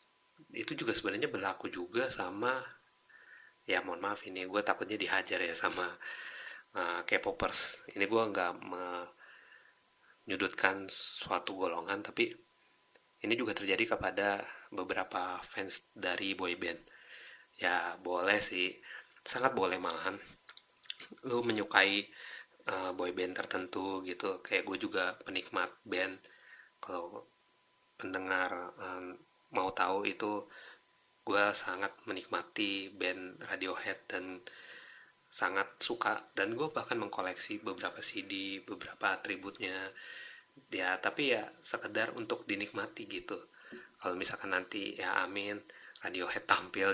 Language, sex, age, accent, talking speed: Indonesian, male, 30-49, native, 110 wpm